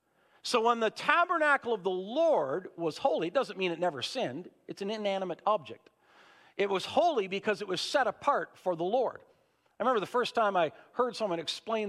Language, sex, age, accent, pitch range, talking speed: English, male, 50-69, American, 175-240 Hz, 195 wpm